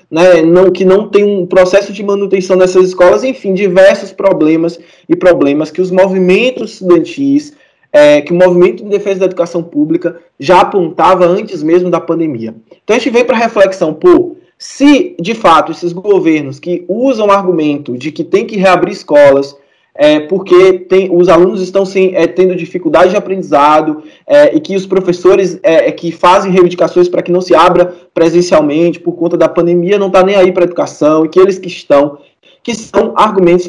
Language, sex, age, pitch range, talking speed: Portuguese, male, 20-39, 155-195 Hz, 175 wpm